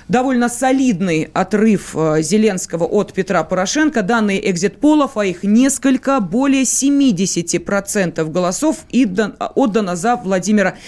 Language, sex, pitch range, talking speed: Russian, female, 185-240 Hz, 115 wpm